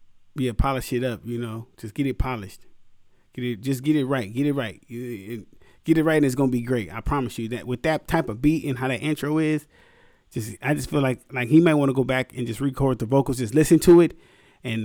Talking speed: 255 wpm